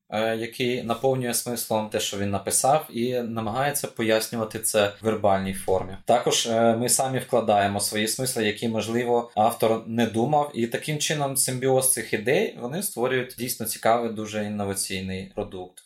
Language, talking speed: Ukrainian, 145 wpm